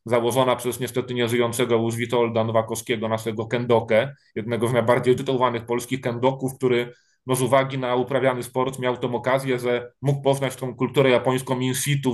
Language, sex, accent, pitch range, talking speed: Polish, male, native, 115-130 Hz, 160 wpm